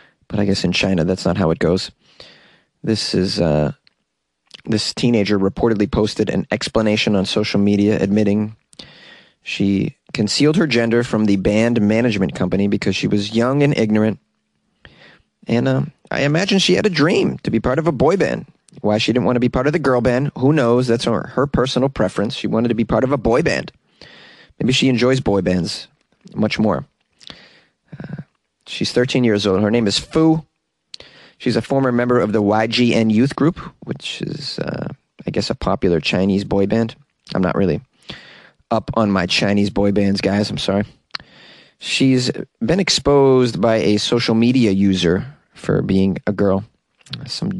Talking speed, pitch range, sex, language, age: 180 wpm, 100-125 Hz, male, English, 30-49